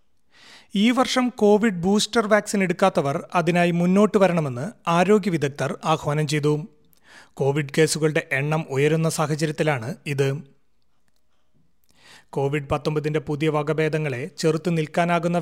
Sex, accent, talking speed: male, native, 90 wpm